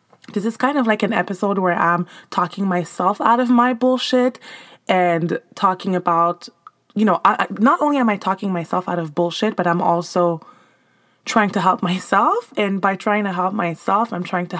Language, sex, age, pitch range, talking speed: English, female, 20-39, 170-210 Hz, 185 wpm